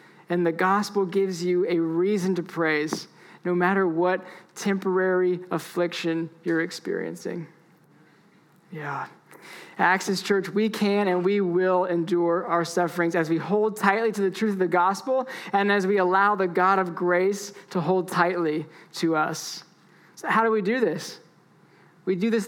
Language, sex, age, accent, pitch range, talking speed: English, male, 20-39, American, 175-205 Hz, 155 wpm